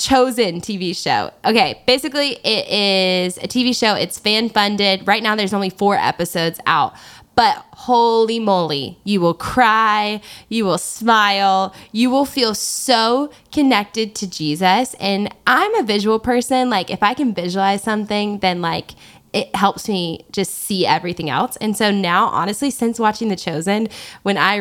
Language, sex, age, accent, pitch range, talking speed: English, female, 10-29, American, 175-220 Hz, 160 wpm